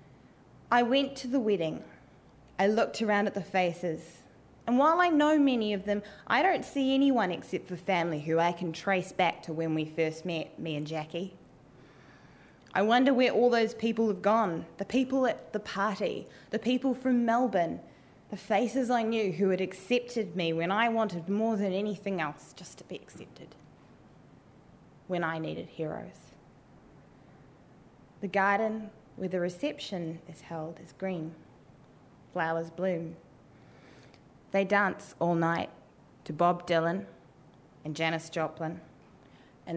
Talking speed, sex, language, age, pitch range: 150 wpm, female, English, 20-39, 165-230 Hz